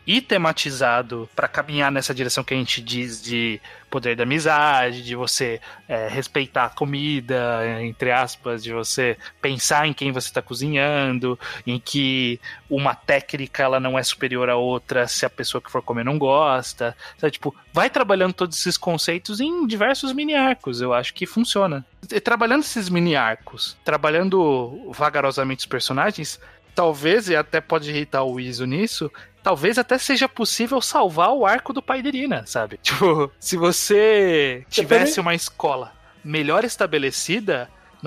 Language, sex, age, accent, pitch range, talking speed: Portuguese, male, 20-39, Brazilian, 125-175 Hz, 155 wpm